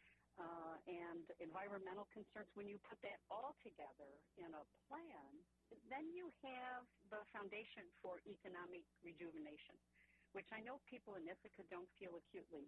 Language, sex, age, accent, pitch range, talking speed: English, female, 60-79, American, 160-205 Hz, 140 wpm